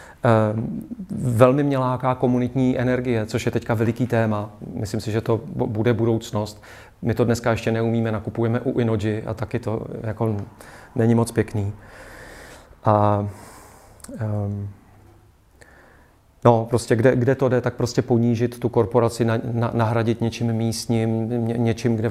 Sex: male